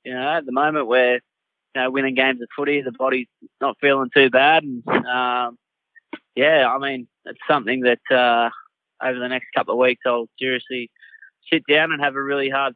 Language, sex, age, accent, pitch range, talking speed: English, male, 20-39, Australian, 120-140 Hz, 200 wpm